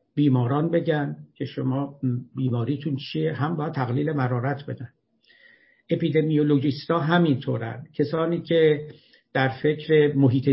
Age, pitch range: 60-79, 135-170 Hz